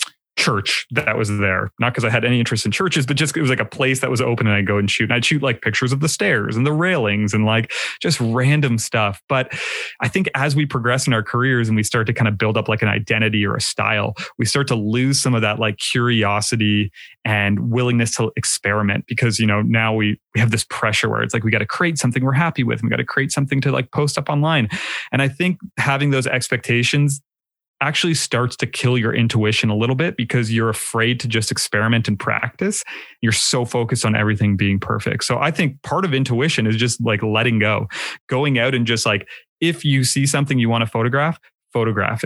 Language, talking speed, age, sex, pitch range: English, 235 wpm, 30-49, male, 110-140 Hz